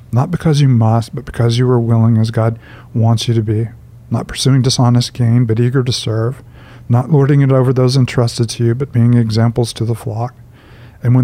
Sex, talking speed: male, 210 wpm